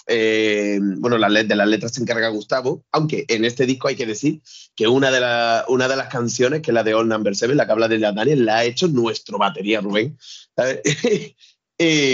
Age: 30-49